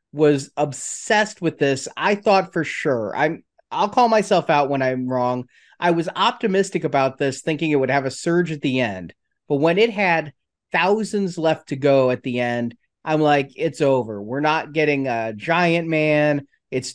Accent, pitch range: American, 140-190 Hz